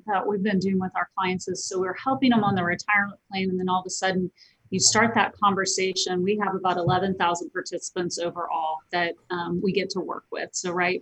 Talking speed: 225 wpm